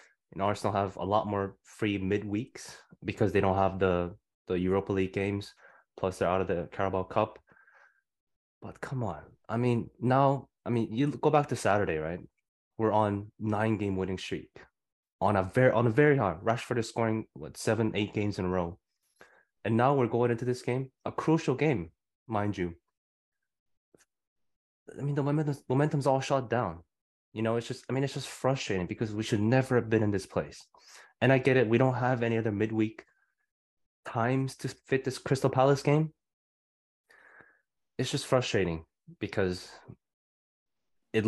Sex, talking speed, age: male, 175 wpm, 20-39